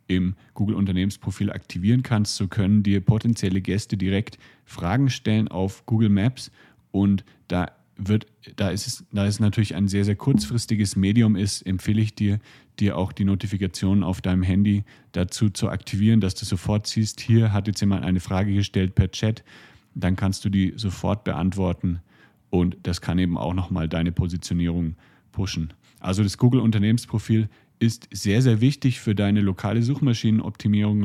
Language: German